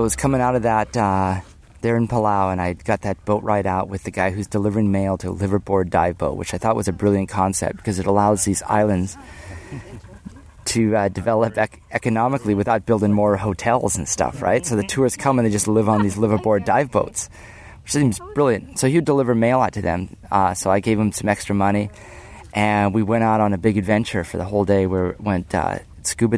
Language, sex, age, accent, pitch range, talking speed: English, male, 30-49, American, 95-110 Hz, 225 wpm